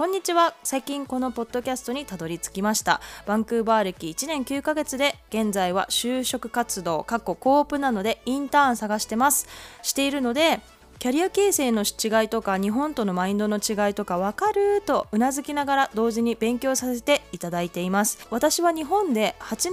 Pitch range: 200-280 Hz